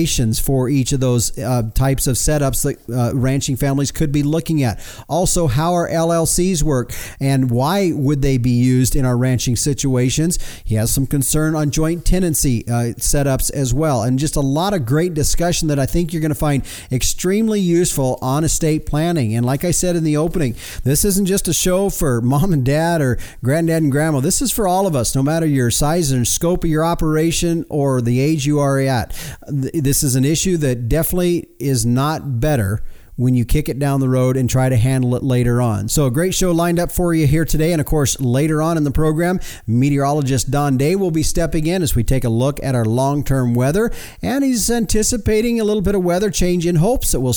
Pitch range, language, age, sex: 125-165 Hz, English, 40-59, male